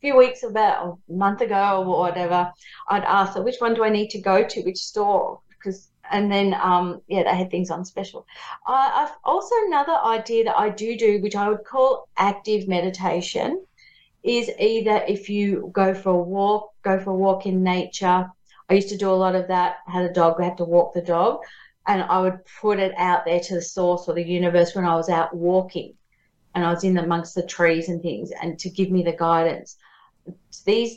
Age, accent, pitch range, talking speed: 40-59, Australian, 175-215 Hz, 215 wpm